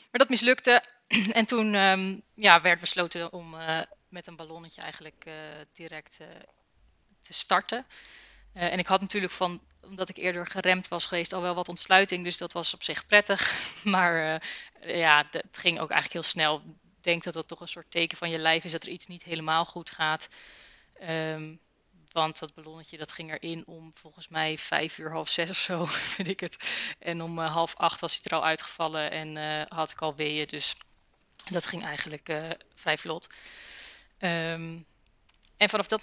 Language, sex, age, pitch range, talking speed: Dutch, female, 20-39, 165-190 Hz, 185 wpm